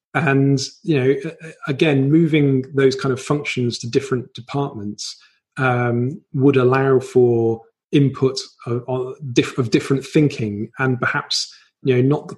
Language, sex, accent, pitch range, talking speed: English, male, British, 120-140 Hz, 130 wpm